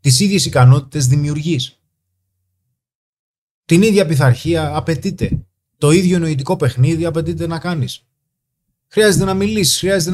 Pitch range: 120-170 Hz